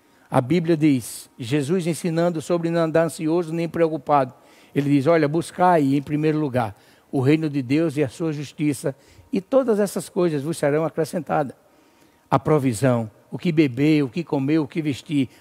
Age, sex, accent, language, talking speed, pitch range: 60-79, male, Brazilian, Portuguese, 170 wpm, 130-170 Hz